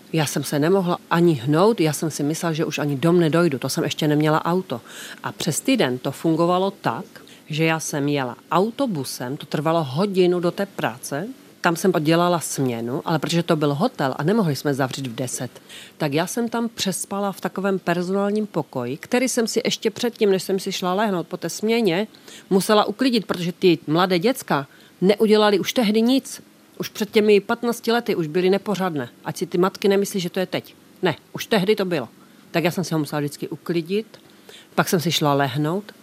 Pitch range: 155-205 Hz